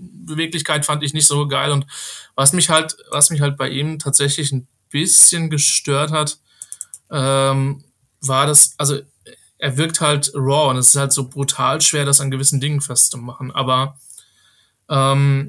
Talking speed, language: 165 wpm, German